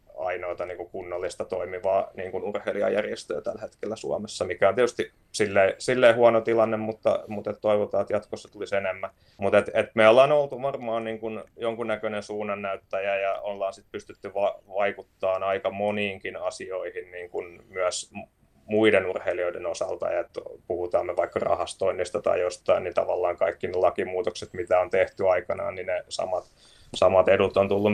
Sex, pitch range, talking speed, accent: male, 95-140 Hz, 155 wpm, native